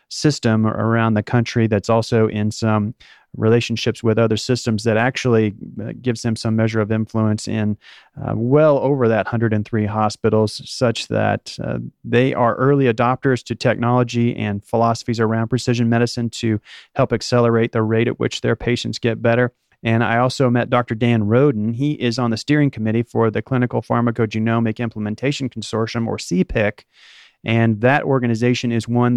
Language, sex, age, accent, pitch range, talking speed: English, male, 30-49, American, 110-125 Hz, 160 wpm